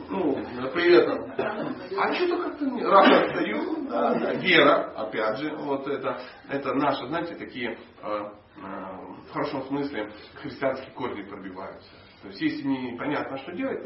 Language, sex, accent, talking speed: Russian, male, native, 140 wpm